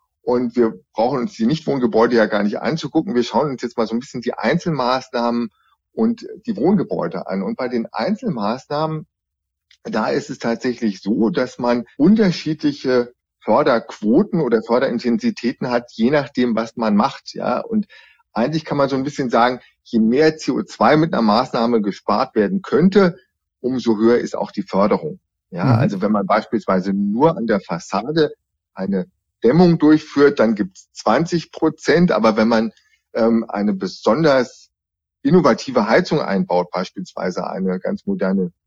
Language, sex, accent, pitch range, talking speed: German, male, German, 105-150 Hz, 155 wpm